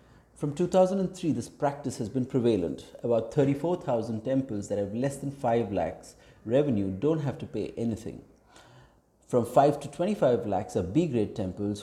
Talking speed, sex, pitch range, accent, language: 155 wpm, male, 105-140 Hz, Indian, English